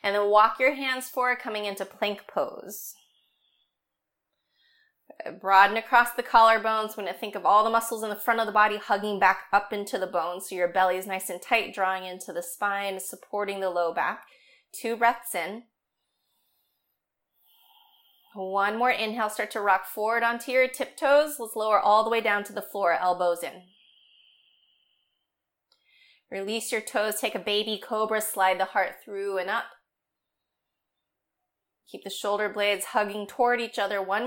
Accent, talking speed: American, 165 wpm